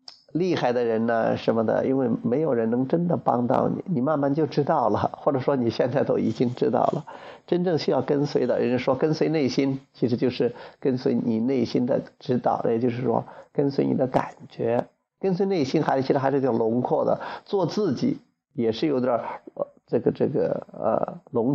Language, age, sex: Chinese, 50-69, male